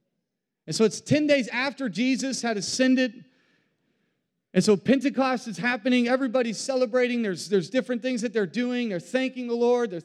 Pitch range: 185-240 Hz